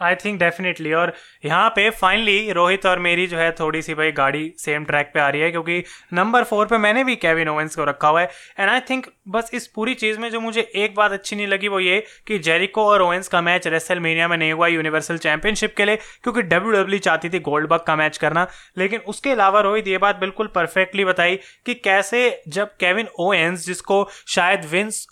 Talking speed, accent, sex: 215 wpm, native, male